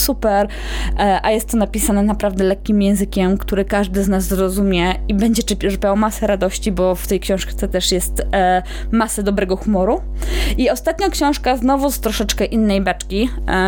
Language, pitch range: Polish, 200-240 Hz